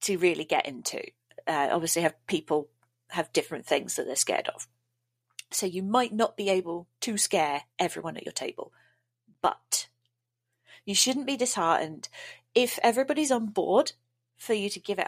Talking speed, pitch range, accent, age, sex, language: 165 wpm, 165-210 Hz, British, 30-49, female, English